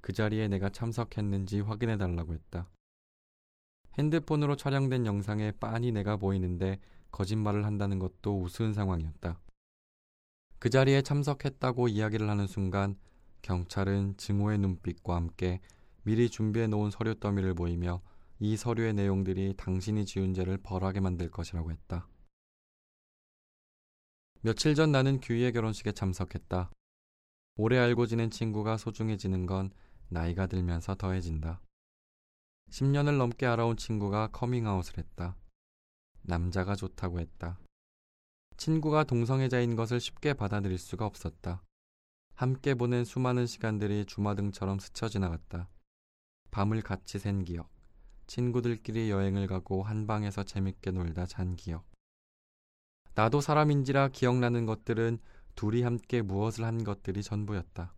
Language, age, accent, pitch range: Korean, 20-39, native, 90-115 Hz